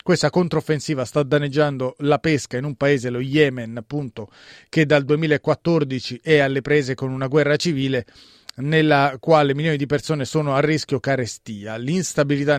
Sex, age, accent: male, 30-49, native